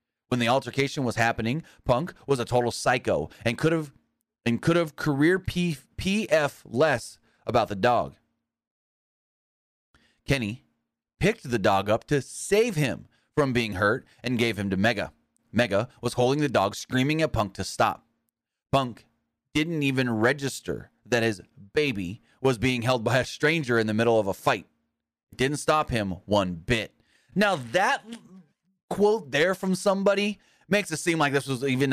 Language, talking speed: English, 160 wpm